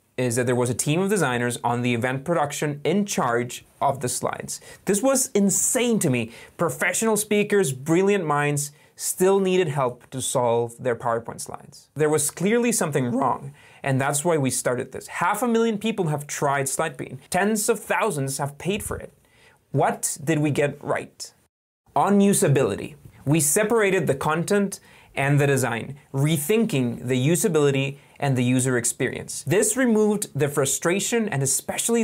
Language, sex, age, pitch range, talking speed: English, male, 20-39, 130-190 Hz, 160 wpm